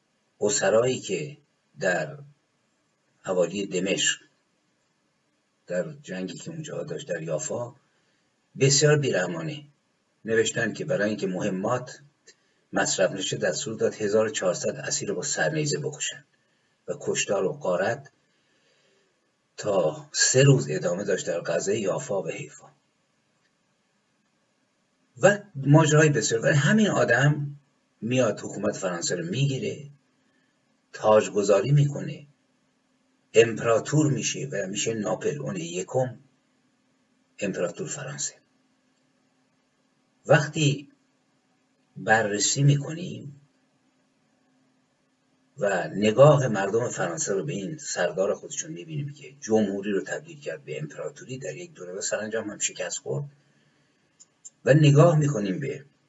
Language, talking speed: Persian, 100 wpm